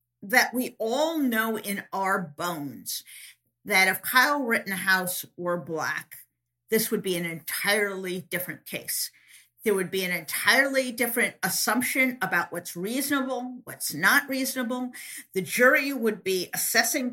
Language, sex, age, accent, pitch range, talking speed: English, female, 50-69, American, 185-250 Hz, 135 wpm